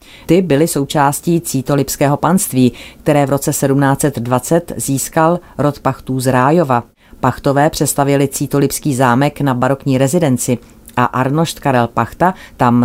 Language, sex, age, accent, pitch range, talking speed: Czech, female, 30-49, native, 125-150 Hz, 120 wpm